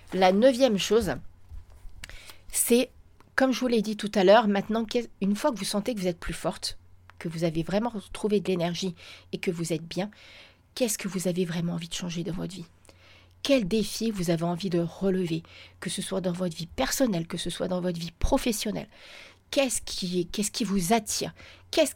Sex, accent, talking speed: female, French, 200 wpm